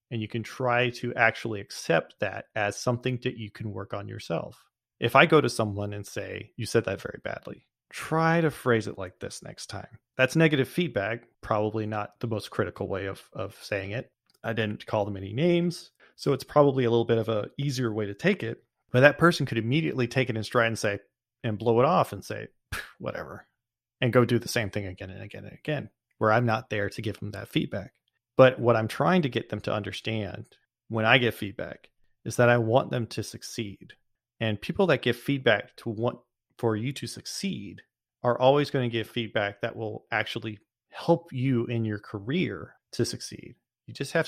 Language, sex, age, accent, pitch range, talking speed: English, male, 30-49, American, 110-130 Hz, 210 wpm